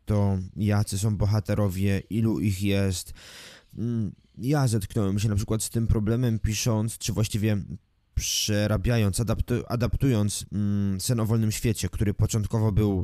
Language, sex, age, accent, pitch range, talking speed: Polish, male, 20-39, native, 100-115 Hz, 120 wpm